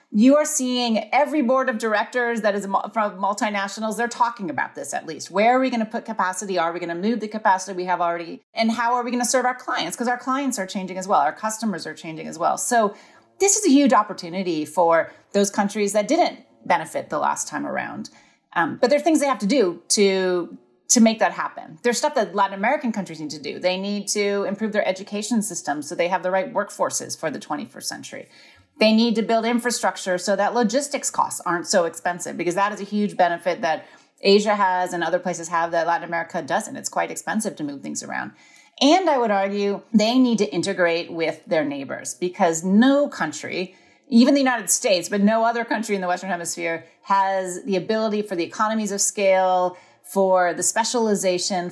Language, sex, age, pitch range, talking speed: English, female, 30-49, 180-235 Hz, 210 wpm